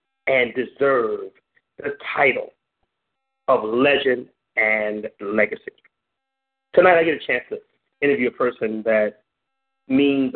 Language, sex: English, male